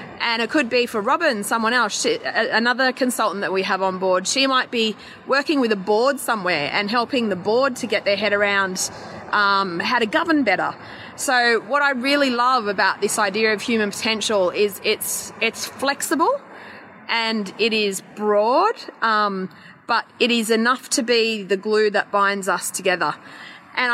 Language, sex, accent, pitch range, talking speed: English, female, Australian, 205-260 Hz, 175 wpm